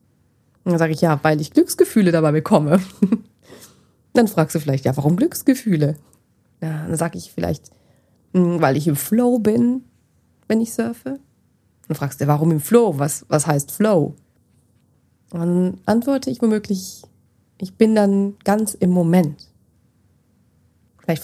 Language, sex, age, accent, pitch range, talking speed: German, female, 30-49, German, 145-195 Hz, 140 wpm